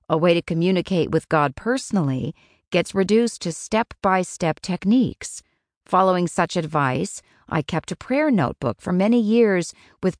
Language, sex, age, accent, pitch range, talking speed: English, female, 40-59, American, 160-220 Hz, 140 wpm